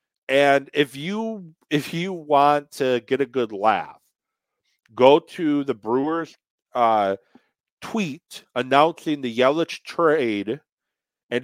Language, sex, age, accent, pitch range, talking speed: English, male, 40-59, American, 110-140 Hz, 115 wpm